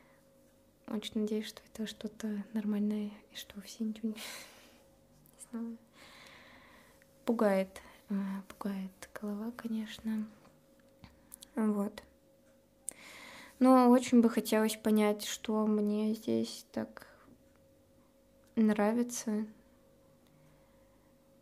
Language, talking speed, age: Russian, 75 wpm, 20-39